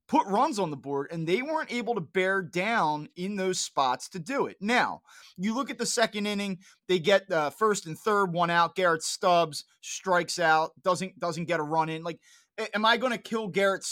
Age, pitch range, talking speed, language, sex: 20-39, 165-210 Hz, 215 wpm, English, male